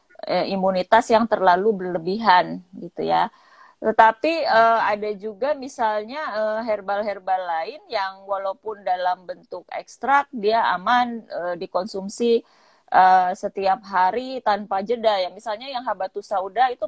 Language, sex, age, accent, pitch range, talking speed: Indonesian, female, 20-39, native, 190-235 Hz, 115 wpm